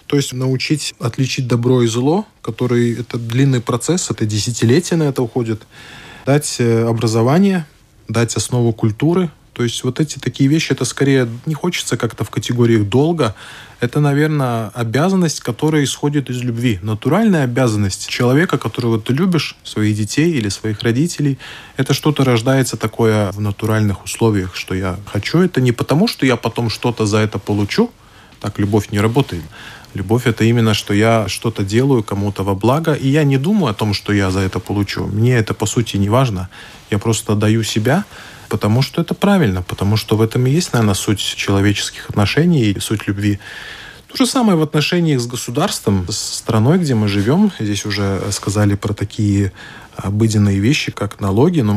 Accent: native